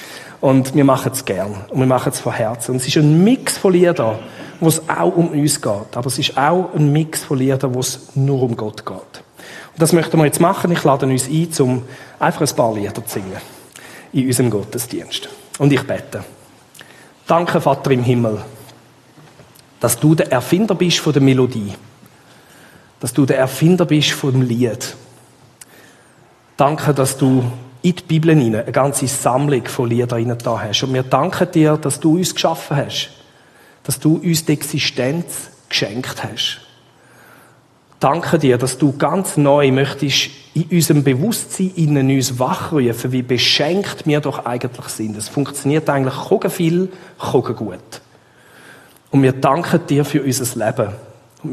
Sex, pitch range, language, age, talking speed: male, 130-155 Hz, German, 40-59, 170 wpm